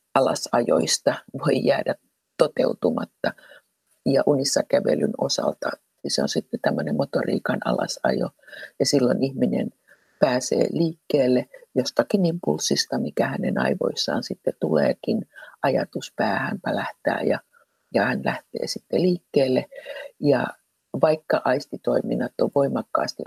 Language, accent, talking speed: Finnish, native, 100 wpm